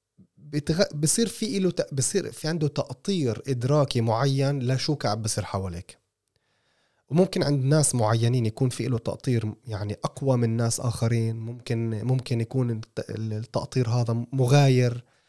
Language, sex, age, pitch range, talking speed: Arabic, male, 20-39, 110-140 Hz, 135 wpm